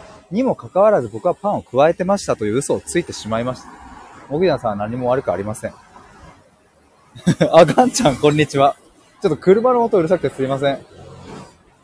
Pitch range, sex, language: 115-195 Hz, male, Japanese